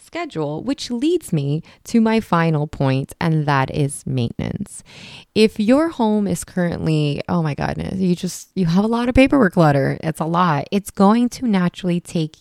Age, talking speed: 20-39, 180 wpm